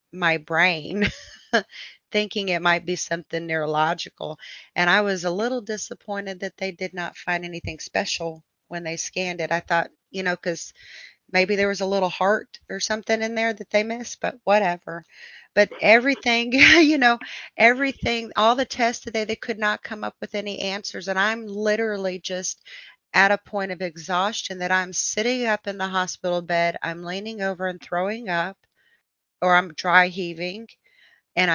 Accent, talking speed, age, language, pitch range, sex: American, 170 wpm, 40-59, English, 175-210 Hz, female